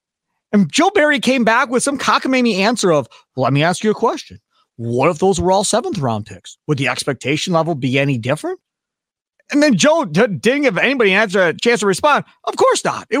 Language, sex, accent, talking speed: English, male, American, 215 wpm